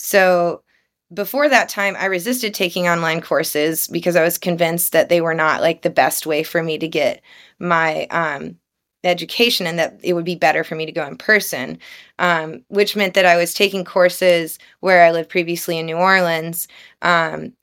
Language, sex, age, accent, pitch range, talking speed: English, female, 20-39, American, 165-190 Hz, 190 wpm